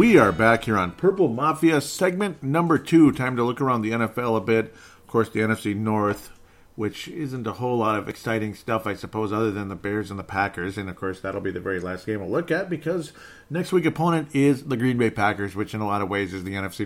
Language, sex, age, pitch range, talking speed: English, male, 40-59, 100-130 Hz, 250 wpm